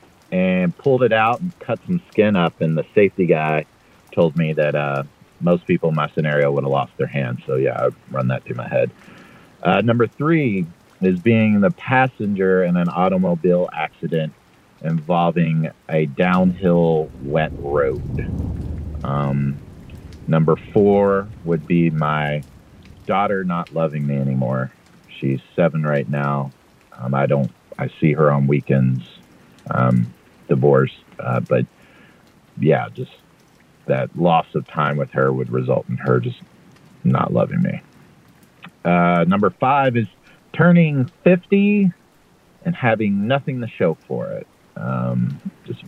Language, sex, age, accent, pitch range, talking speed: English, male, 40-59, American, 70-110 Hz, 140 wpm